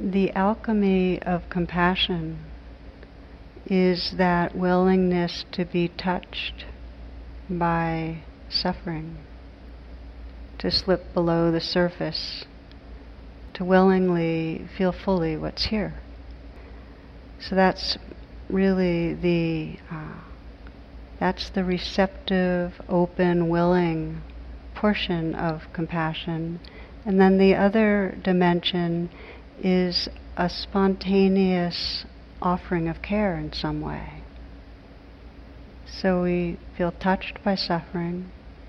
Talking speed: 85 wpm